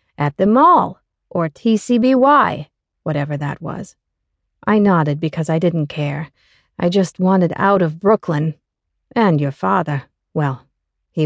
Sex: female